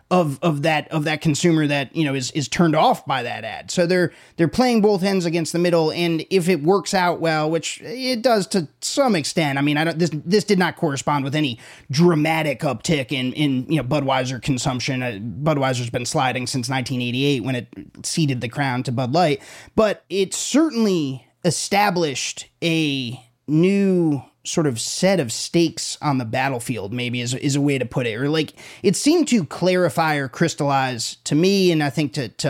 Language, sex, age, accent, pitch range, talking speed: English, male, 30-49, American, 135-170 Hz, 200 wpm